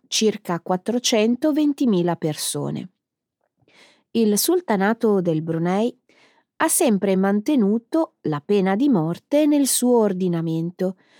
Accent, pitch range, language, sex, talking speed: native, 175-270 Hz, Italian, female, 90 wpm